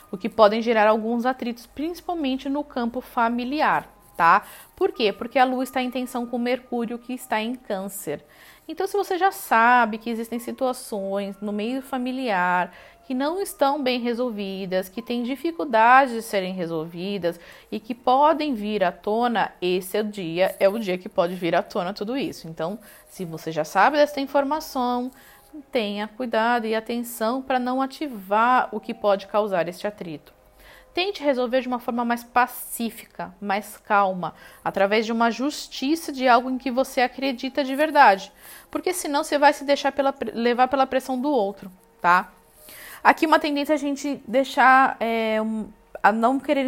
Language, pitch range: Portuguese, 210-265 Hz